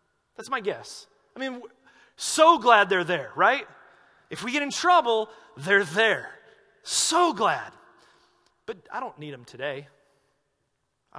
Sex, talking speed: male, 140 wpm